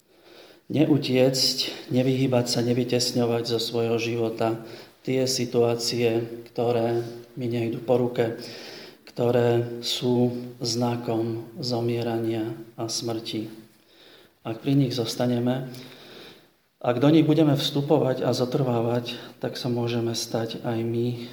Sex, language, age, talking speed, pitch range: male, Slovak, 40-59, 105 wpm, 115-130 Hz